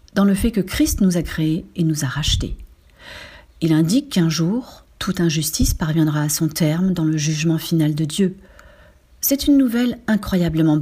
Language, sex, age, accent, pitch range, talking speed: French, female, 40-59, French, 155-195 Hz, 175 wpm